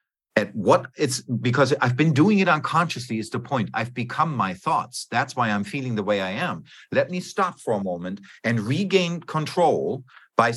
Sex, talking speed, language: male, 195 wpm, English